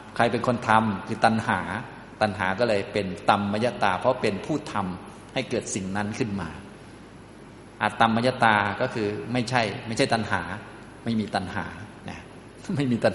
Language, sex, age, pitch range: Thai, male, 20-39, 100-120 Hz